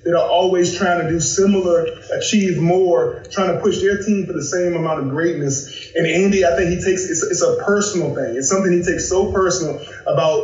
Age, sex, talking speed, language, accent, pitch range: 20-39, male, 220 wpm, English, American, 160-200 Hz